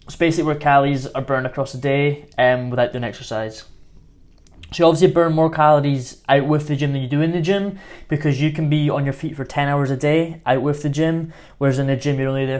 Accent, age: British, 20-39